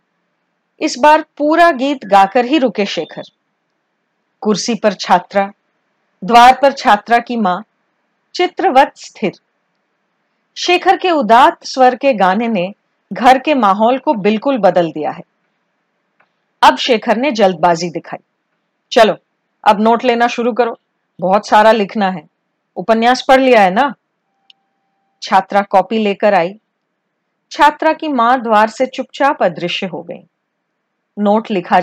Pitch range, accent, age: 195-275 Hz, native, 40-59